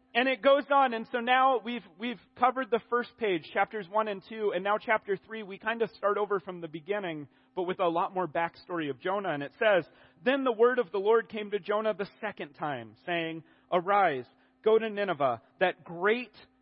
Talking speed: 215 wpm